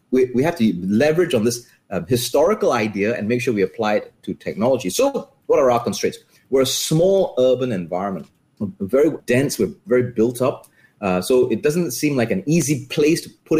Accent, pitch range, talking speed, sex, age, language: Malaysian, 120-155 Hz, 200 wpm, male, 30-49, English